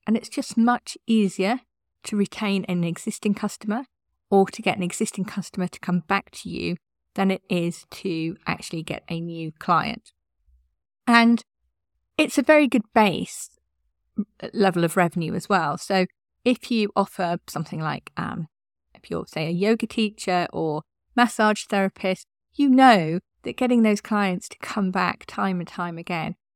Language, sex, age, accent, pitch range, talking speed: English, female, 40-59, British, 170-215 Hz, 160 wpm